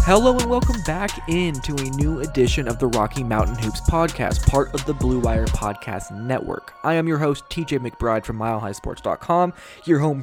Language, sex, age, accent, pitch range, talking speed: English, male, 20-39, American, 115-145 Hz, 190 wpm